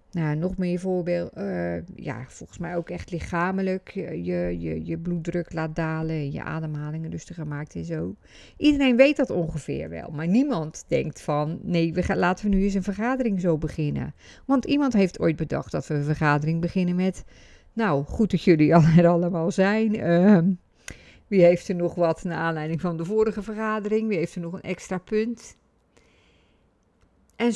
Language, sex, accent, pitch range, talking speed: Dutch, female, Dutch, 165-220 Hz, 175 wpm